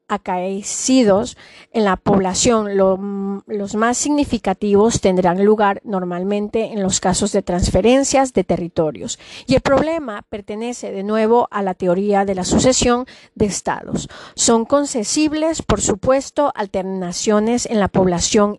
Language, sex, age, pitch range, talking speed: Spanish, female, 40-59, 190-240 Hz, 125 wpm